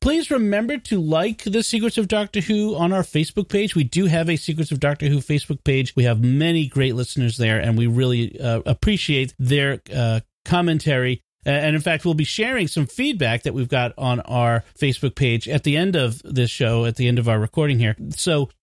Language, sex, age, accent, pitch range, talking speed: English, male, 40-59, American, 125-175 Hz, 215 wpm